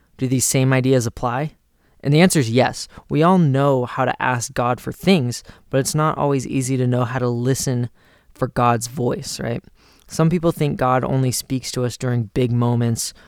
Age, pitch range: 20-39, 120-135 Hz